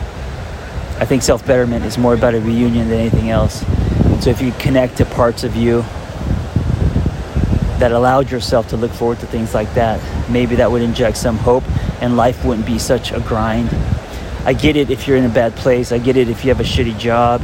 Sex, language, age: male, English, 30-49